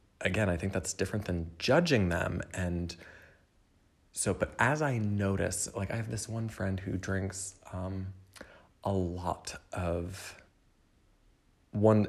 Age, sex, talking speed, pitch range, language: 30-49, male, 135 wpm, 90-110 Hz, English